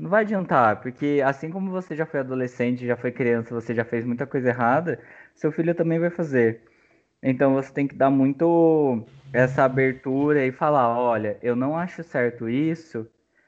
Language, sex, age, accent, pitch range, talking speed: Portuguese, male, 20-39, Brazilian, 120-160 Hz, 180 wpm